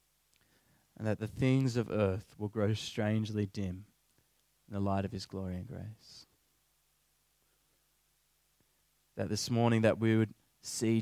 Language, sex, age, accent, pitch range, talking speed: English, male, 20-39, Australian, 100-115 Hz, 135 wpm